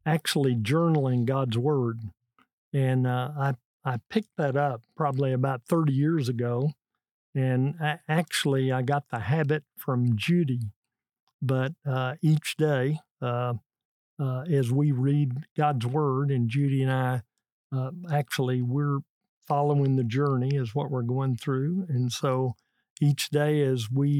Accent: American